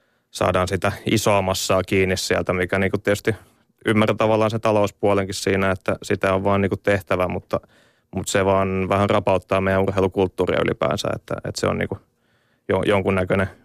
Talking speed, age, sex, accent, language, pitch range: 150 wpm, 20-39, male, native, Finnish, 95-105 Hz